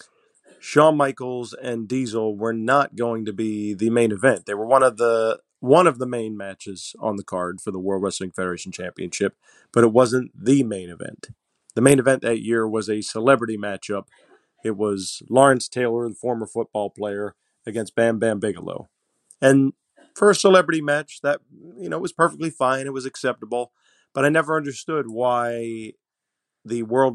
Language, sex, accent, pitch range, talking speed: English, male, American, 105-135 Hz, 175 wpm